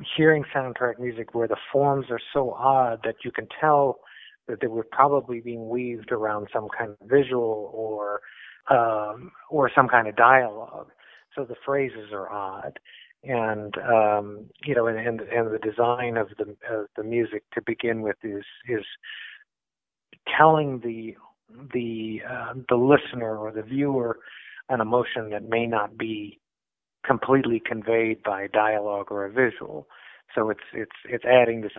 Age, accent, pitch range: 50-69, American, 105-125 Hz